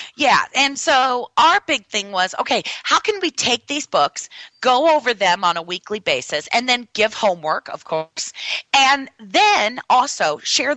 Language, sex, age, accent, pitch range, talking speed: English, female, 30-49, American, 180-250 Hz, 175 wpm